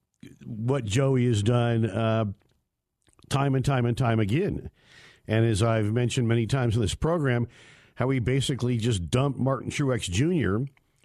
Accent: American